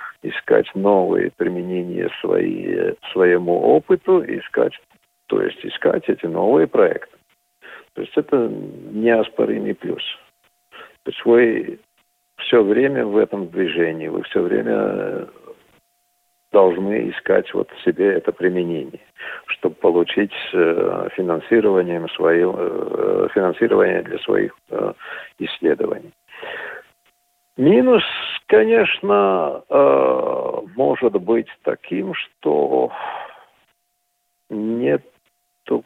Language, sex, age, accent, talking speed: Russian, male, 50-69, native, 85 wpm